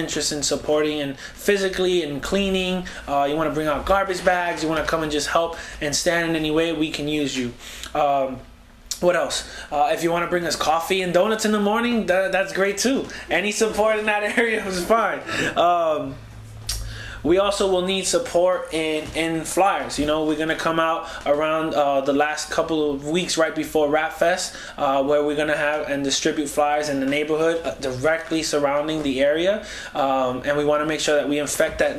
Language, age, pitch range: English, 20-39, 145-175 Hz